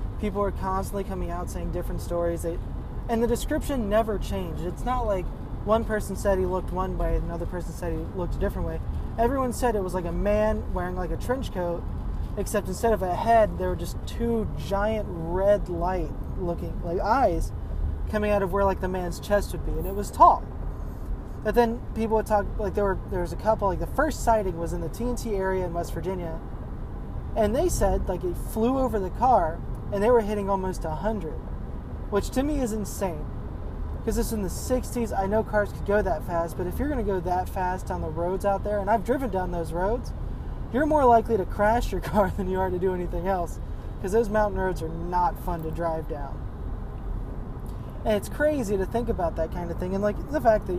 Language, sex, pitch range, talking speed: English, male, 175-225 Hz, 220 wpm